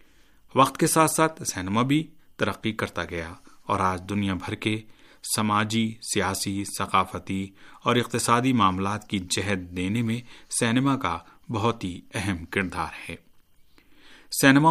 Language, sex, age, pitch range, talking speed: Urdu, male, 40-59, 95-120 Hz, 130 wpm